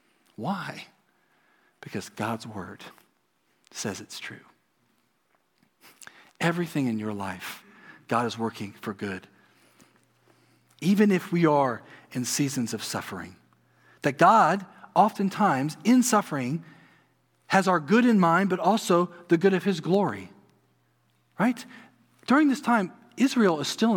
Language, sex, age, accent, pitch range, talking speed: English, male, 40-59, American, 115-170 Hz, 120 wpm